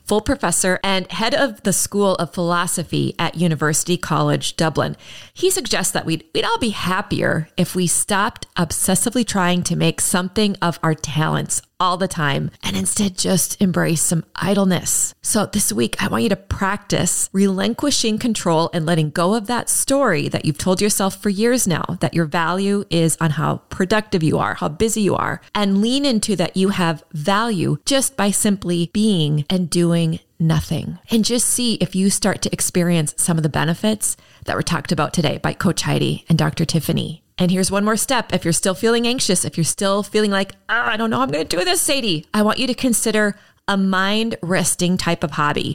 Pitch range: 165-215 Hz